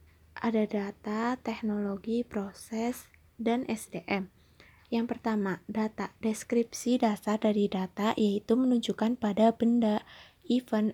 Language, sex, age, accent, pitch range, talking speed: Indonesian, female, 20-39, native, 205-235 Hz, 100 wpm